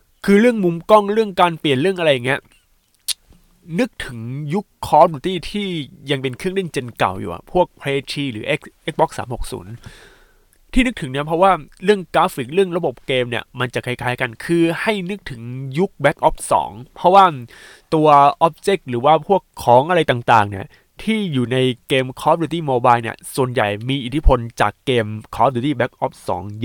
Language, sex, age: Thai, male, 20-39